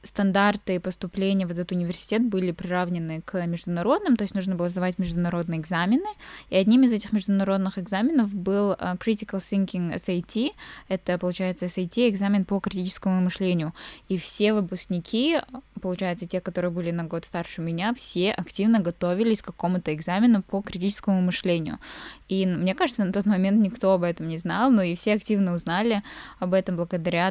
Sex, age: female, 10-29